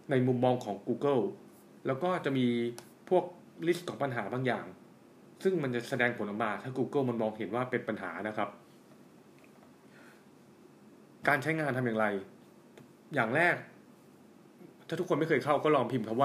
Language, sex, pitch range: Thai, male, 115-140 Hz